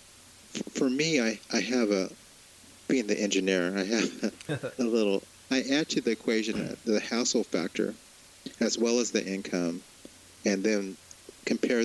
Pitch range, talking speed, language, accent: 95-110 Hz, 150 wpm, English, American